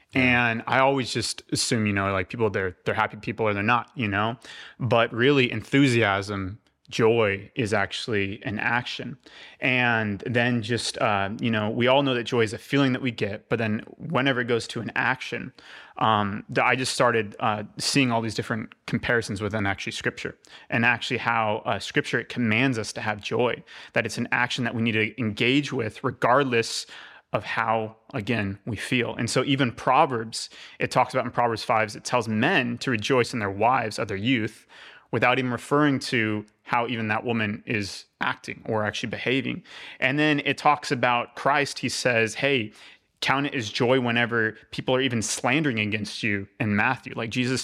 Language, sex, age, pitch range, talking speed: English, male, 30-49, 110-130 Hz, 185 wpm